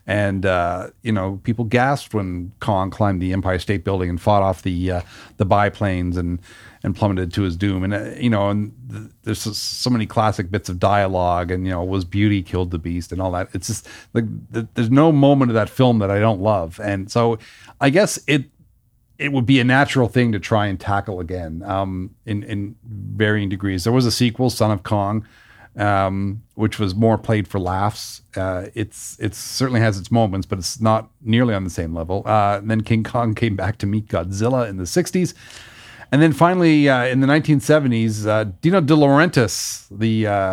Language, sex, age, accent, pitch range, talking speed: English, male, 40-59, American, 95-115 Hz, 205 wpm